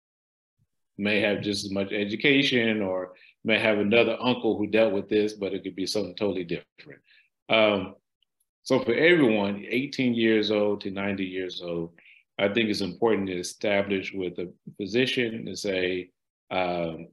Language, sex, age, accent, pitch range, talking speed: English, male, 40-59, American, 95-110 Hz, 160 wpm